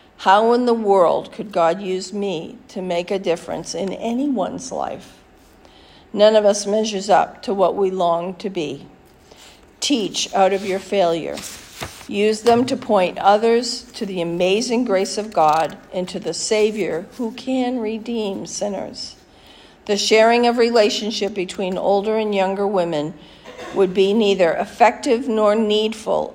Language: English